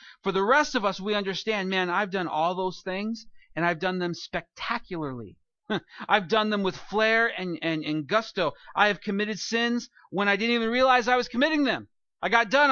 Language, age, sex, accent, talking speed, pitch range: English, 40-59, male, American, 195 wpm, 145-220 Hz